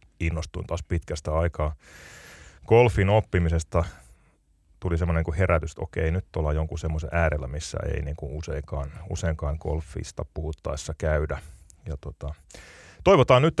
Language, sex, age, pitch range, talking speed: Finnish, male, 30-49, 80-105 Hz, 130 wpm